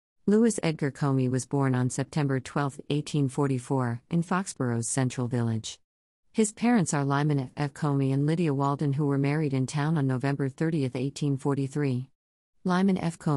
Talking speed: 145 wpm